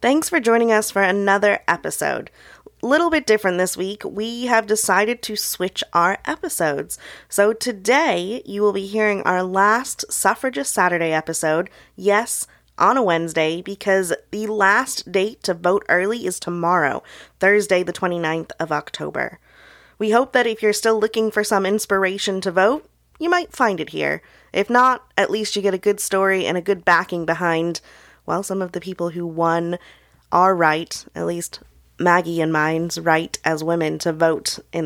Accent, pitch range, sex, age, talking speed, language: American, 170-215 Hz, female, 20-39, 170 wpm, English